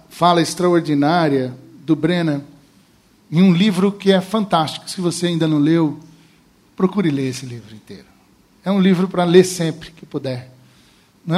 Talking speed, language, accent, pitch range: 155 wpm, Portuguese, Brazilian, 145-180 Hz